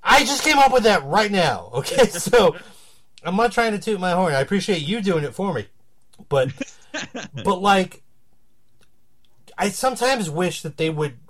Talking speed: 175 wpm